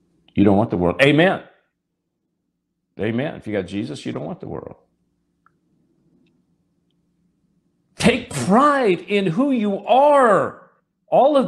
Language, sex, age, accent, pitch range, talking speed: English, male, 50-69, American, 160-265 Hz, 125 wpm